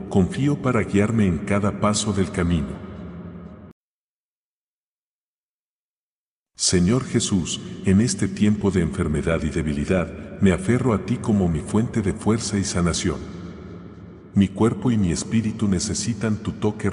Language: English